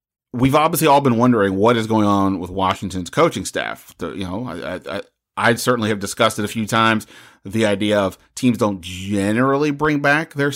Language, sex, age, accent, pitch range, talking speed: English, male, 30-49, American, 105-130 Hz, 205 wpm